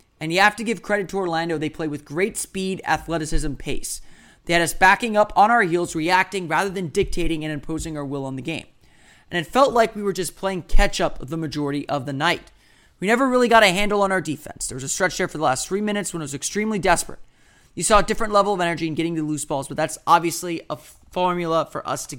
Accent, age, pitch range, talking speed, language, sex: American, 30-49, 155-200 Hz, 250 wpm, English, male